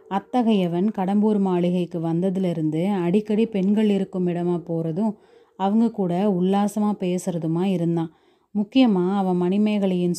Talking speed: 100 wpm